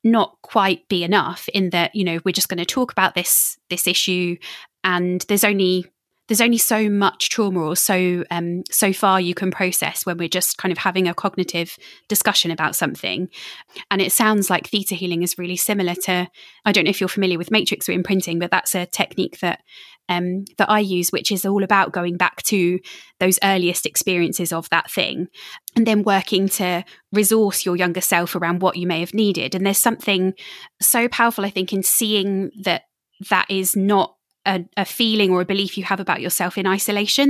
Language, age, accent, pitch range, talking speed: English, 20-39, British, 180-205 Hz, 200 wpm